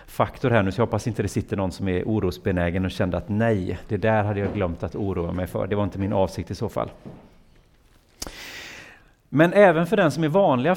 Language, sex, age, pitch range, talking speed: Swedish, male, 40-59, 100-130 Hz, 230 wpm